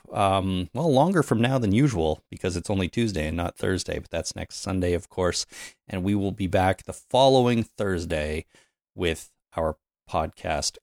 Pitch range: 90-115 Hz